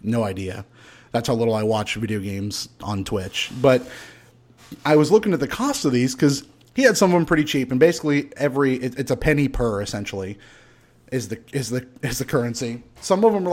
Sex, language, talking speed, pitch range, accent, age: male, English, 215 wpm, 120-160 Hz, American, 30-49